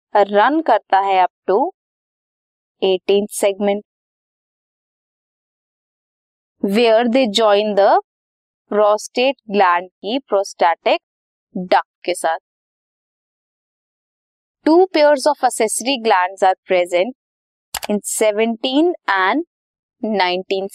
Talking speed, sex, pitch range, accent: 60 wpm, female, 200-260 Hz, native